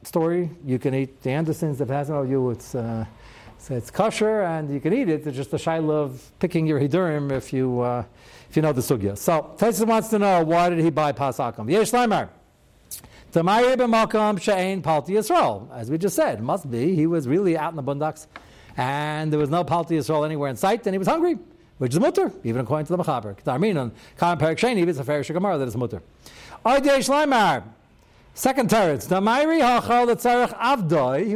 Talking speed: 190 wpm